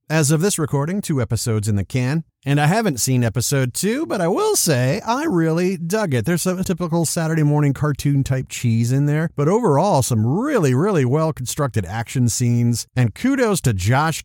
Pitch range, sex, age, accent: 115-170 Hz, male, 50-69, American